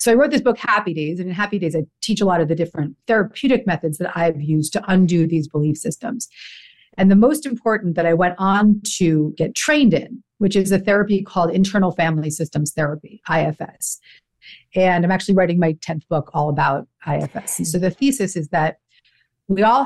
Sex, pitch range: female, 160-205 Hz